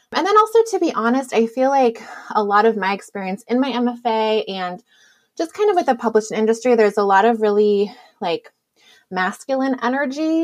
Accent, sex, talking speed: American, female, 190 wpm